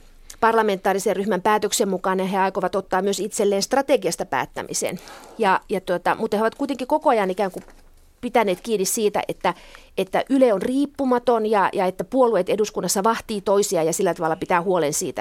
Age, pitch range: 30-49, 195-270 Hz